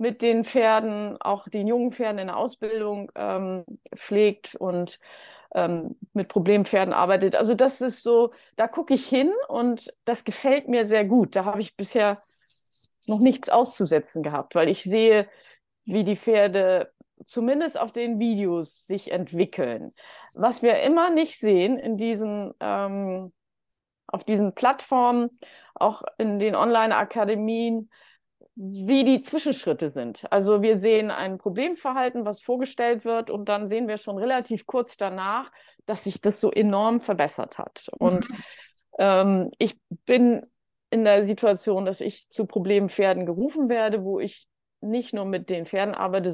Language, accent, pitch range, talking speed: German, German, 195-240 Hz, 150 wpm